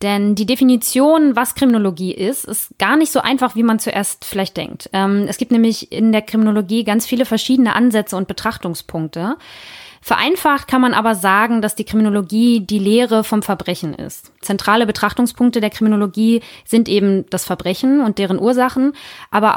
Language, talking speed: German, 165 wpm